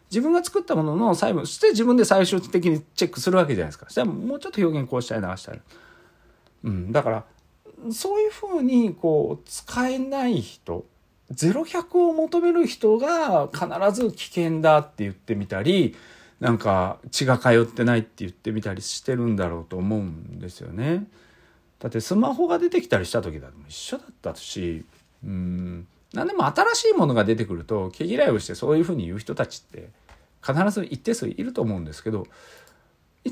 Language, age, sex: Japanese, 40-59, male